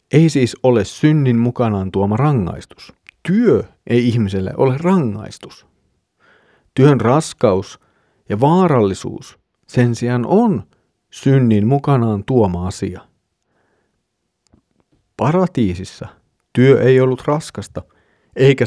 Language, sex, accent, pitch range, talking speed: Finnish, male, native, 105-140 Hz, 95 wpm